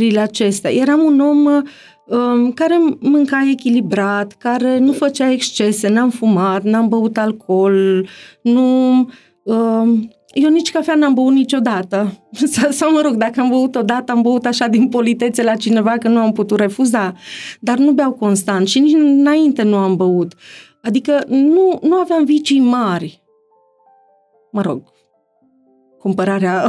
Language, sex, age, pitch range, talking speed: Romanian, female, 30-49, 215-280 Hz, 140 wpm